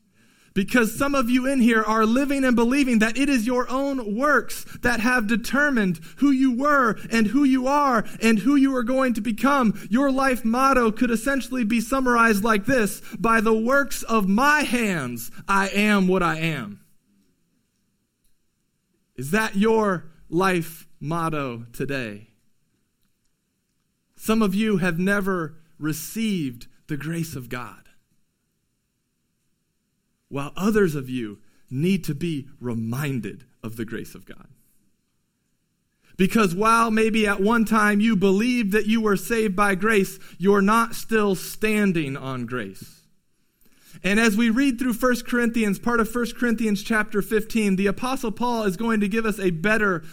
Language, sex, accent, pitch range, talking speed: English, male, American, 170-230 Hz, 150 wpm